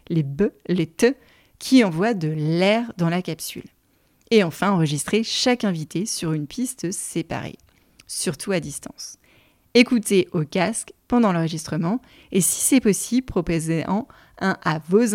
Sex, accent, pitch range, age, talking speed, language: female, French, 165-215 Hz, 30-49, 145 wpm, French